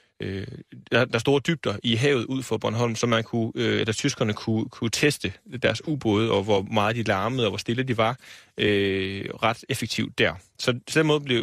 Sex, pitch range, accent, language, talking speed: male, 105-125 Hz, native, Danish, 190 wpm